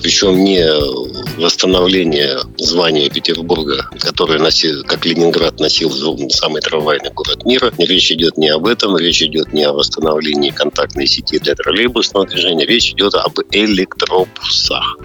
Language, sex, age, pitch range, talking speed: Russian, male, 50-69, 80-100 Hz, 135 wpm